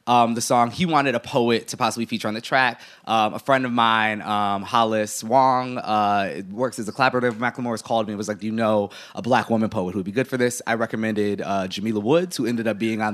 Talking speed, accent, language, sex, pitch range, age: 255 wpm, American, English, male, 100-125 Hz, 20-39